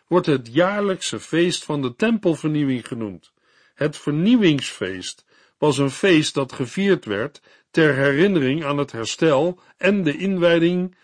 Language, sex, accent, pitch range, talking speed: Dutch, male, Dutch, 120-170 Hz, 130 wpm